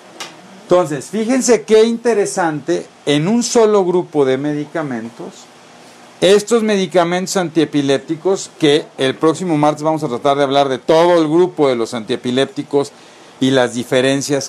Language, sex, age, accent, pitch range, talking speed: Spanish, male, 50-69, Mexican, 135-175 Hz, 135 wpm